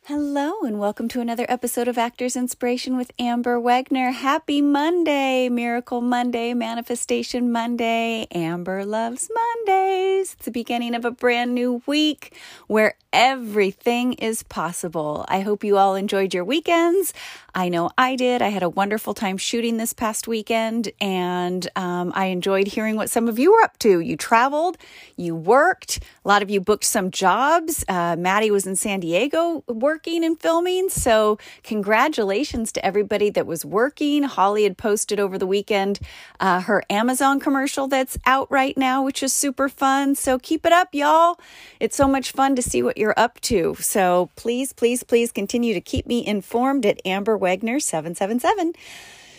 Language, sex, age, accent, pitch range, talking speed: English, female, 30-49, American, 205-275 Hz, 170 wpm